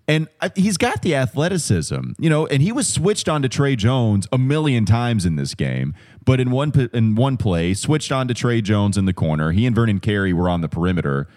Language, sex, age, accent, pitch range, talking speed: English, male, 30-49, American, 95-130 Hz, 225 wpm